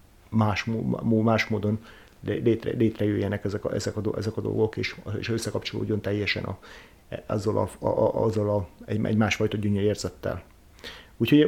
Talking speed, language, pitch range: 115 wpm, Hungarian, 100-115 Hz